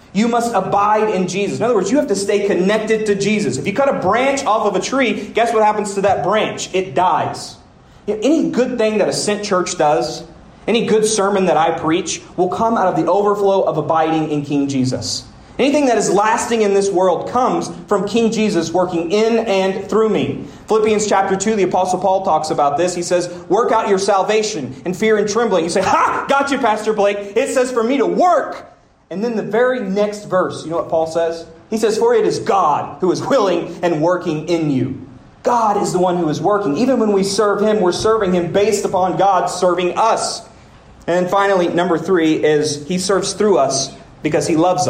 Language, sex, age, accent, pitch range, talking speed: English, male, 30-49, American, 165-210 Hz, 215 wpm